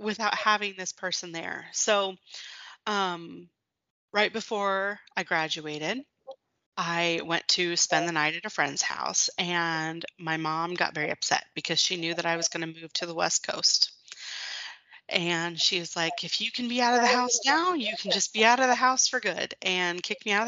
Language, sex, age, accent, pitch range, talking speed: English, female, 30-49, American, 165-200 Hz, 200 wpm